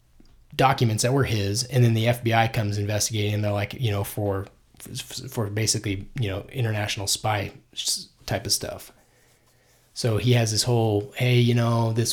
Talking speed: 170 wpm